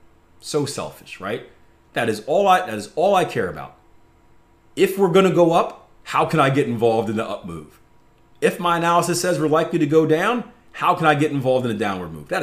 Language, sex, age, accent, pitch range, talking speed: English, male, 30-49, American, 95-150 Hz, 225 wpm